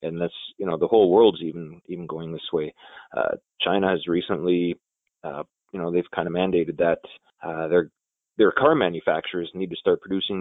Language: English